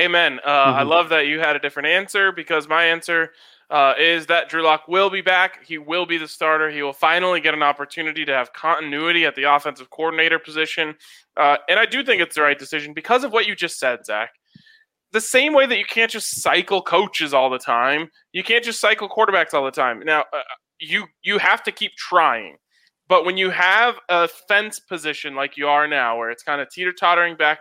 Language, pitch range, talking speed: English, 145-195 Hz, 220 wpm